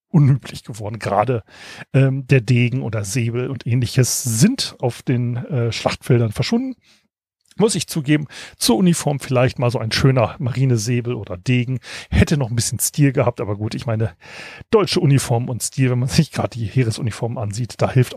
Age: 40-59